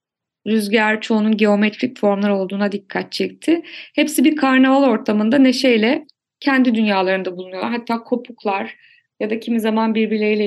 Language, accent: Turkish, native